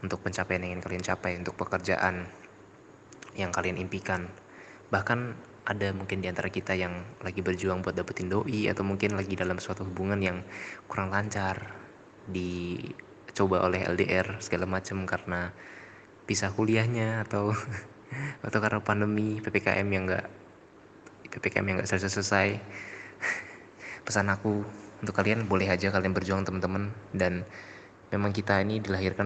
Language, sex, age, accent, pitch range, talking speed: Indonesian, male, 20-39, native, 95-105 Hz, 135 wpm